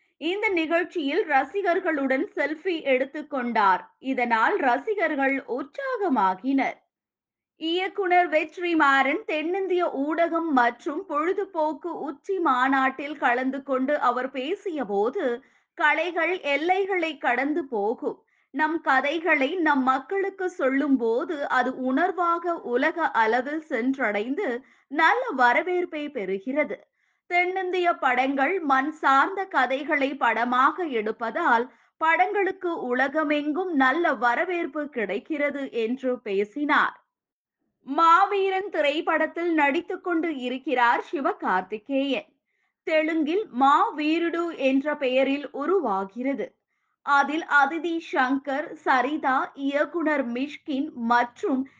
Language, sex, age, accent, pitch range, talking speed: Tamil, female, 20-39, native, 265-335 Hz, 80 wpm